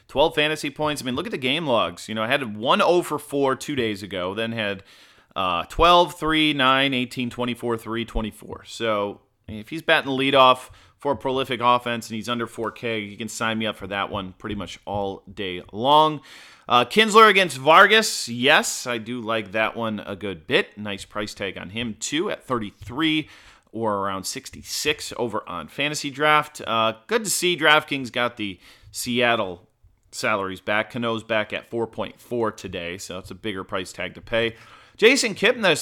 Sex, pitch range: male, 110-145 Hz